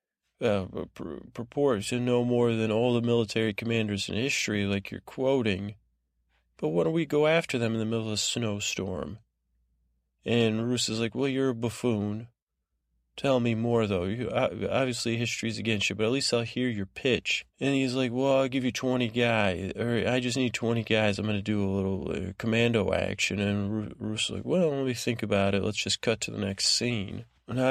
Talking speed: 210 wpm